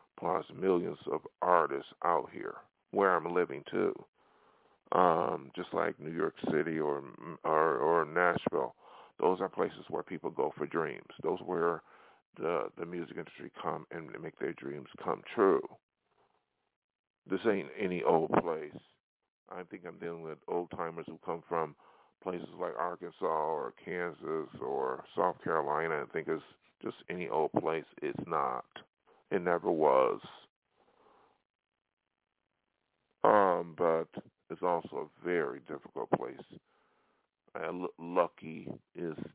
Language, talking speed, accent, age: English, 135 wpm, American, 40-59